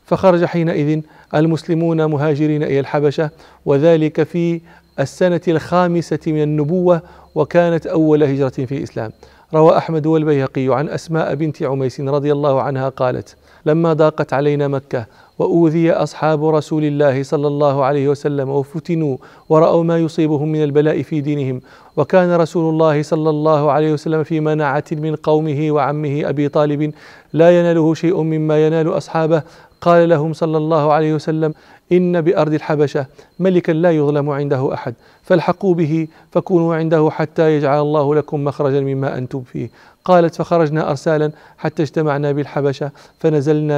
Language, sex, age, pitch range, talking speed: English, male, 40-59, 145-165 Hz, 140 wpm